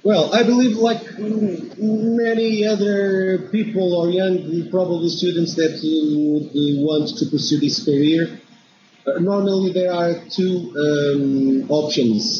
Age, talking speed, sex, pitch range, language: 40-59, 115 wpm, male, 145-180 Hz, English